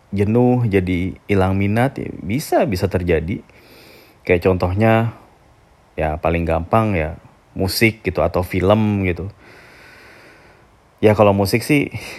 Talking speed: 115 wpm